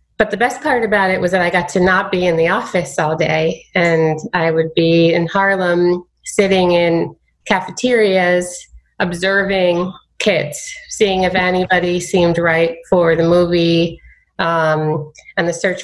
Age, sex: 30-49, female